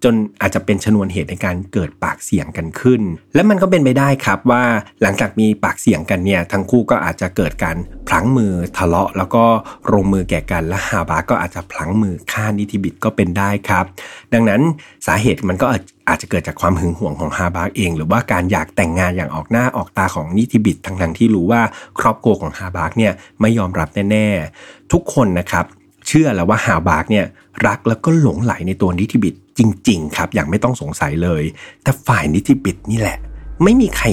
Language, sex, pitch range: Thai, male, 90-115 Hz